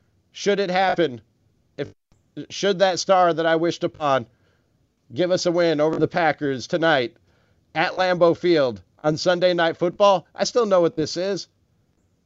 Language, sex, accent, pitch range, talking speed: English, male, American, 130-190 Hz, 155 wpm